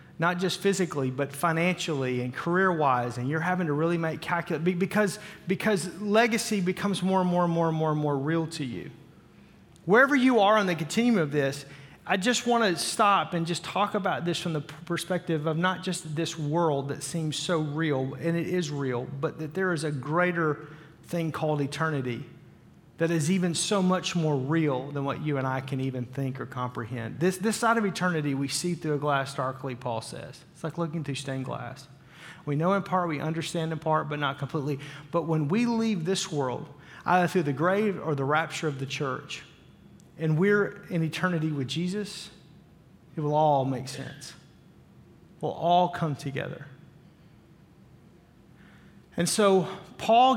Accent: American